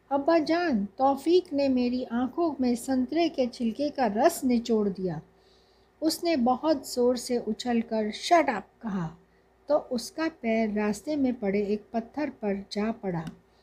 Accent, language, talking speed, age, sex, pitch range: native, Hindi, 145 wpm, 60-79, female, 210-280 Hz